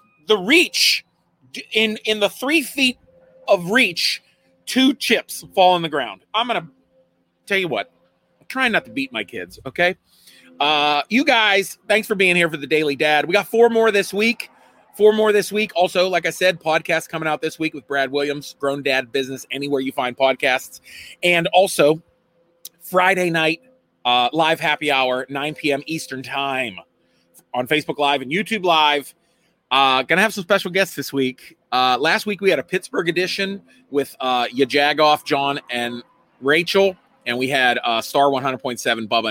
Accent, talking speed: American, 175 wpm